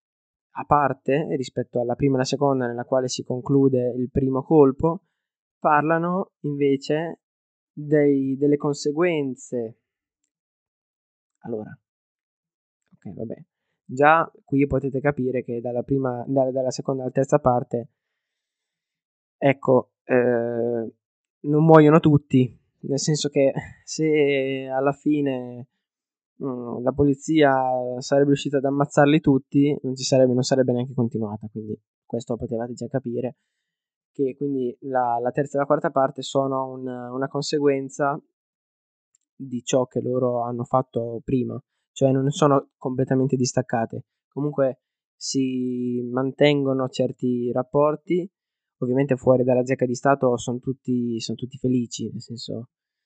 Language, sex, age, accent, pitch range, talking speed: Italian, male, 20-39, native, 125-140 Hz, 120 wpm